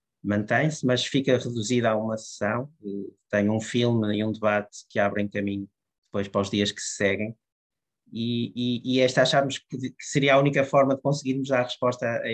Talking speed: 190 wpm